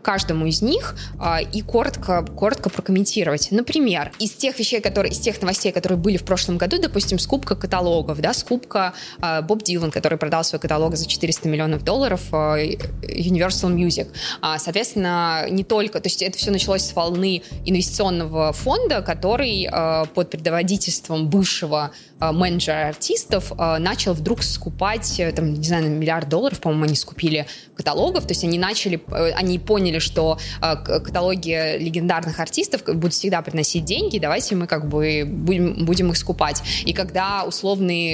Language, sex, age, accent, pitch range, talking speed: Russian, female, 20-39, native, 160-195 Hz, 145 wpm